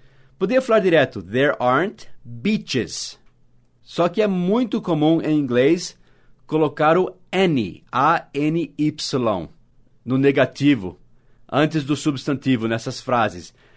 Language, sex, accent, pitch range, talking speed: English, male, Brazilian, 130-165 Hz, 105 wpm